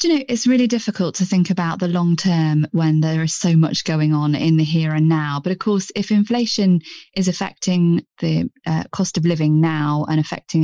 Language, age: English, 20-39